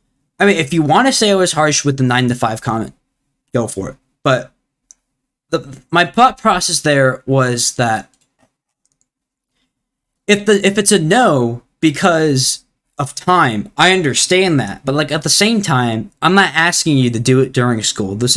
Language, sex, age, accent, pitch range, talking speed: English, male, 10-29, American, 125-165 Hz, 180 wpm